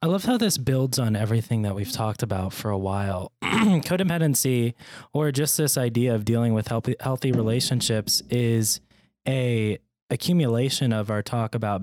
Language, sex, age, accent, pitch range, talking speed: English, male, 20-39, American, 105-130 Hz, 160 wpm